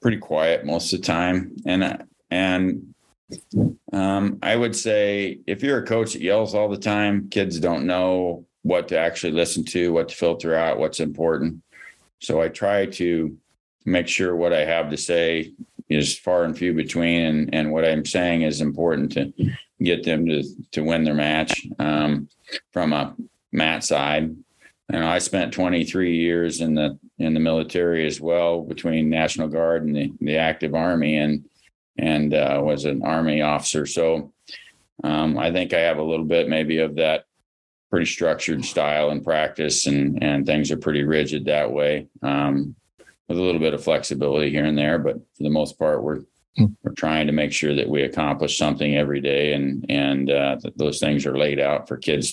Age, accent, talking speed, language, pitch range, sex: 40-59, American, 185 wpm, English, 75-85 Hz, male